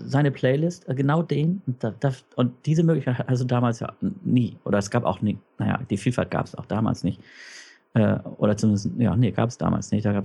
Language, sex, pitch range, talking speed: German, male, 105-130 Hz, 200 wpm